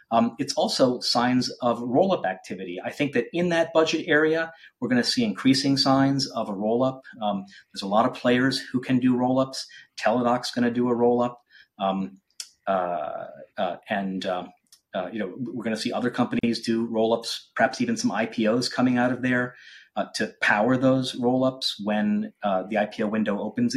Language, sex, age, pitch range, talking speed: English, male, 30-49, 110-130 Hz, 180 wpm